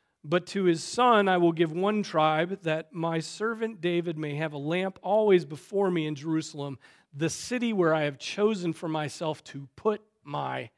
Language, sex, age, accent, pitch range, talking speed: English, male, 40-59, American, 150-185 Hz, 185 wpm